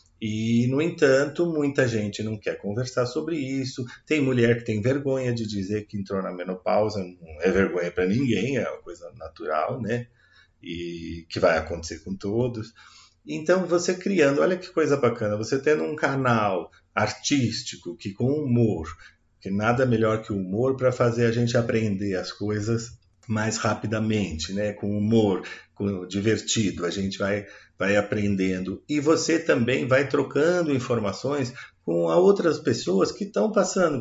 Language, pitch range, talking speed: Portuguese, 100-130 Hz, 155 wpm